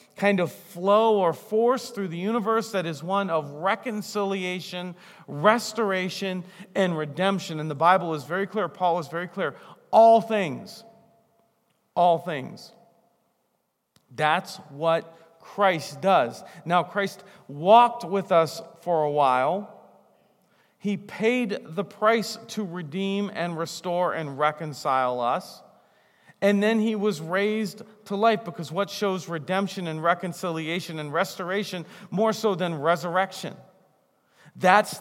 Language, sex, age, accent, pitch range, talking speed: English, male, 40-59, American, 160-205 Hz, 125 wpm